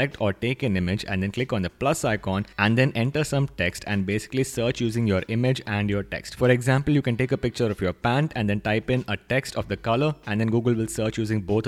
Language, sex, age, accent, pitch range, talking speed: English, male, 20-39, Indian, 100-125 Hz, 260 wpm